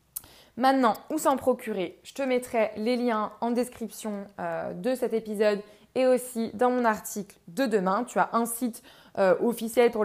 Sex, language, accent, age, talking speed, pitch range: female, French, French, 20-39, 175 wpm, 200-240 Hz